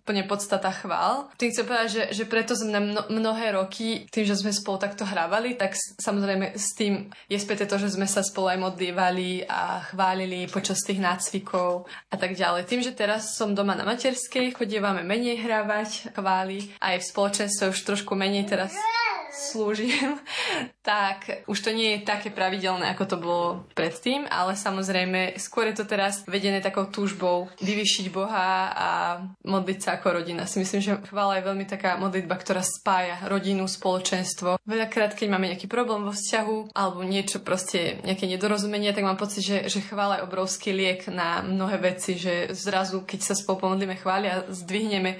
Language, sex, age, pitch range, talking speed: Slovak, female, 20-39, 185-210 Hz, 175 wpm